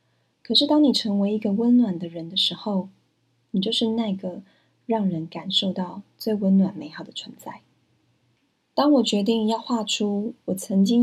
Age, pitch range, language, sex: 20-39, 180-225 Hz, Chinese, female